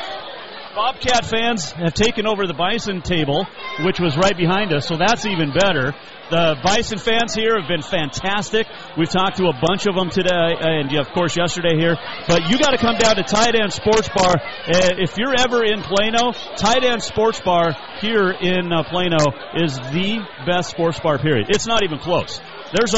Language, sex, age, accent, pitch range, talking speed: English, male, 40-59, American, 160-210 Hz, 180 wpm